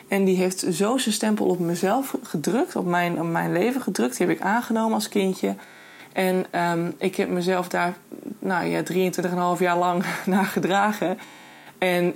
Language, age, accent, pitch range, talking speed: Dutch, 20-39, Dutch, 180-220 Hz, 175 wpm